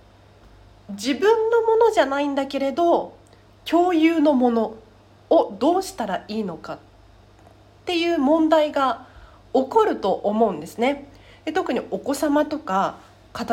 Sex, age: female, 40-59